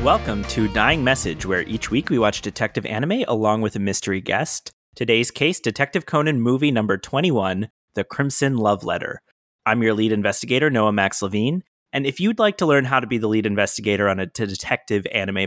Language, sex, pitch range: English, male, 100-135 Hz